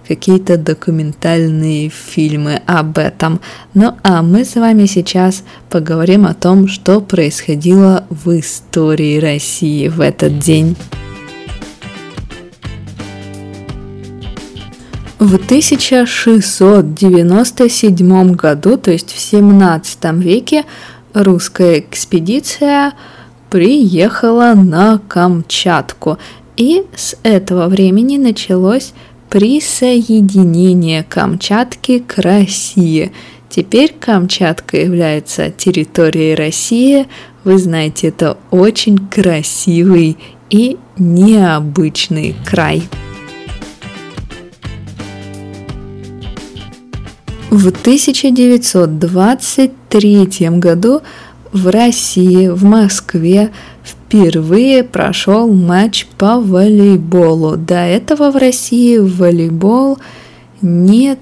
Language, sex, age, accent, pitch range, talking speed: Russian, female, 20-39, native, 160-210 Hz, 75 wpm